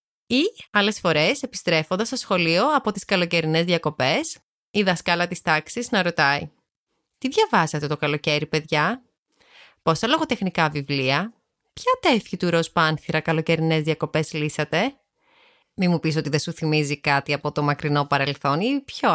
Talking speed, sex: 170 wpm, female